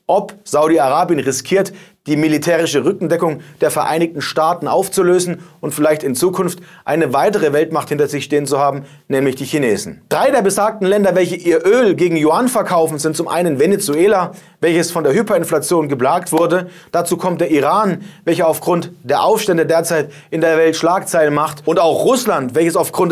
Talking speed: 165 wpm